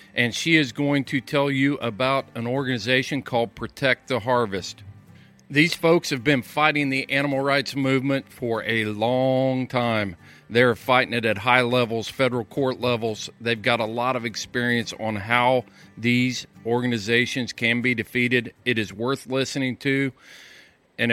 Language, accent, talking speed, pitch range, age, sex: English, American, 155 wpm, 115-140 Hz, 40-59, male